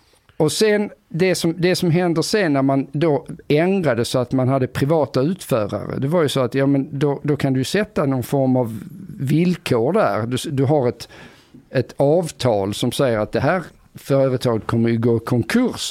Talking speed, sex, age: 190 wpm, male, 50-69